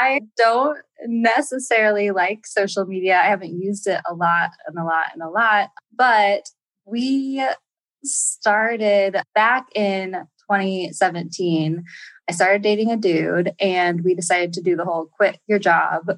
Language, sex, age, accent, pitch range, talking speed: English, female, 20-39, American, 180-230 Hz, 145 wpm